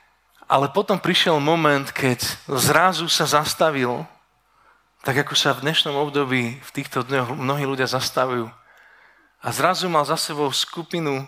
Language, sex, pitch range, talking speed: Slovak, male, 125-160 Hz, 140 wpm